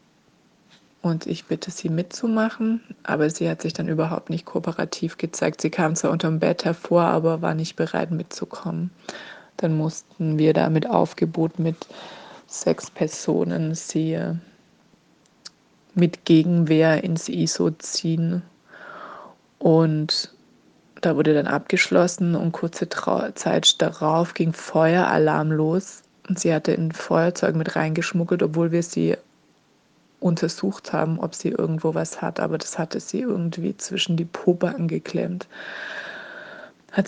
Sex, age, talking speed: female, 20-39, 130 wpm